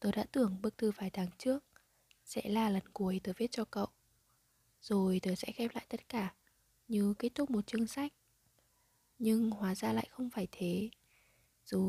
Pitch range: 195-230 Hz